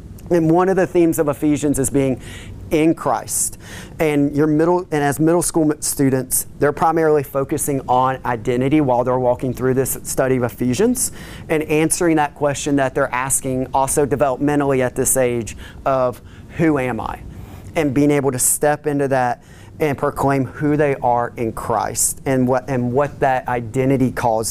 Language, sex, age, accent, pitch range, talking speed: English, male, 30-49, American, 125-150 Hz, 170 wpm